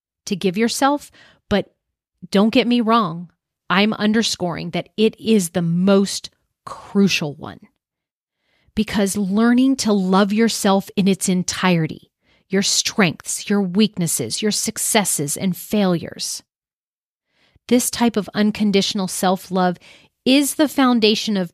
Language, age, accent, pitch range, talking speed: English, 40-59, American, 180-220 Hz, 115 wpm